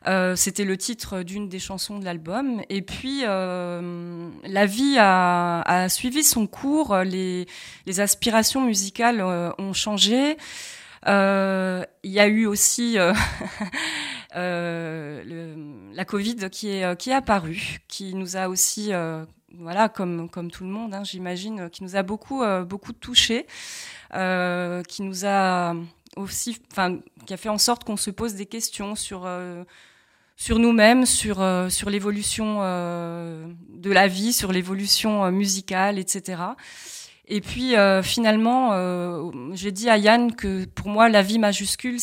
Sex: female